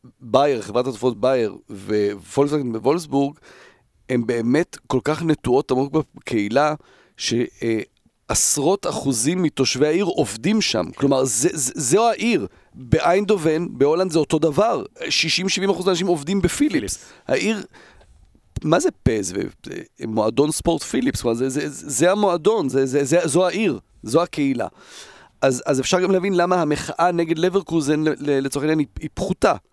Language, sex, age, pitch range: Hebrew, male, 40-59, 125-160 Hz